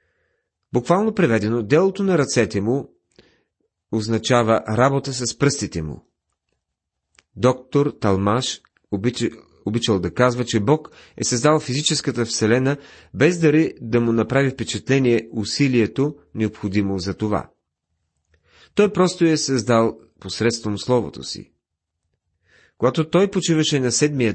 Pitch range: 105-145 Hz